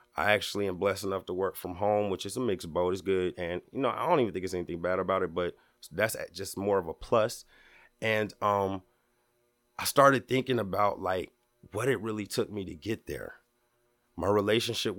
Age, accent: 30-49, American